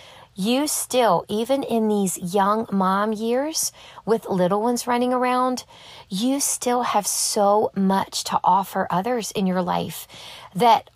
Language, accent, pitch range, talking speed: English, American, 175-230 Hz, 135 wpm